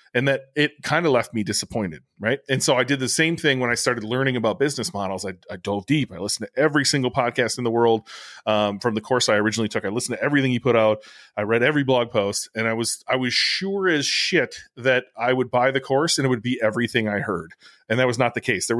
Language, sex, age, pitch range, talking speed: English, male, 30-49, 110-135 Hz, 265 wpm